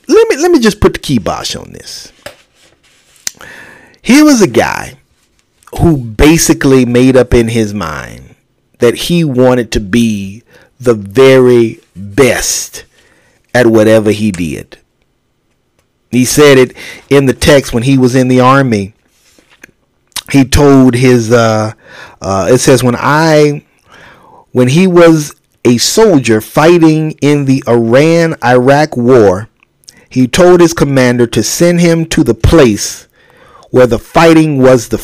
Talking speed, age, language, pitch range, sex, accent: 135 wpm, 40-59, English, 120-155 Hz, male, American